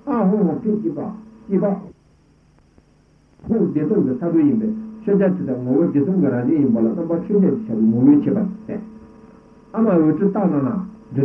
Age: 60-79